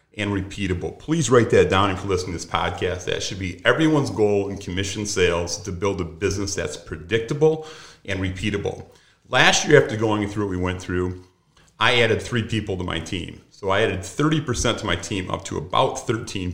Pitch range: 90-115 Hz